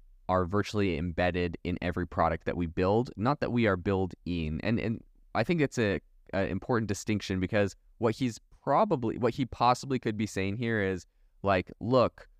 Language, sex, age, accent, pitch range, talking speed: English, male, 20-39, American, 95-115 Hz, 180 wpm